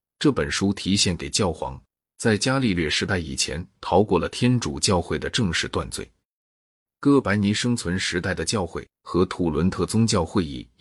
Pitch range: 85-105 Hz